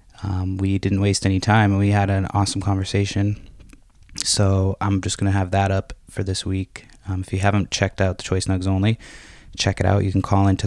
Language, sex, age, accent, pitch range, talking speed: English, male, 20-39, American, 95-100 Hz, 225 wpm